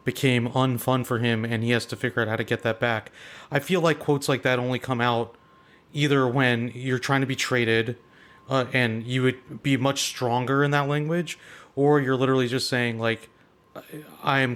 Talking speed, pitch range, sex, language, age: 200 wpm, 120-135 Hz, male, English, 30-49